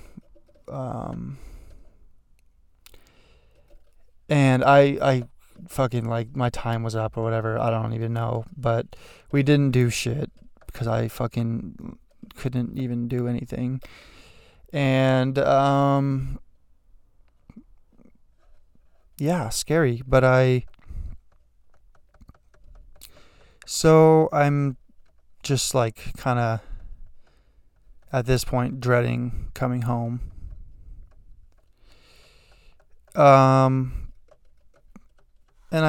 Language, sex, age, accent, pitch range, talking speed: English, male, 20-39, American, 115-135 Hz, 80 wpm